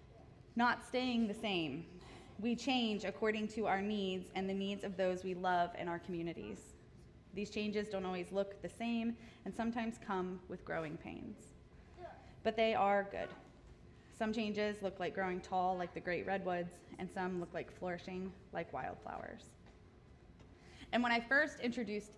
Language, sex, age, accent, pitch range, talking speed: English, female, 20-39, American, 185-230 Hz, 160 wpm